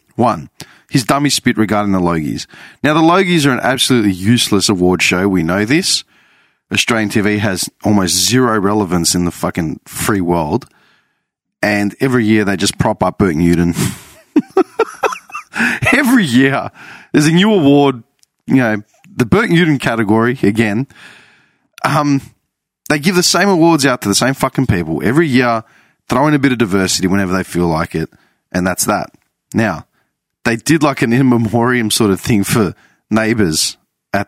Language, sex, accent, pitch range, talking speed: English, male, Australian, 100-140 Hz, 160 wpm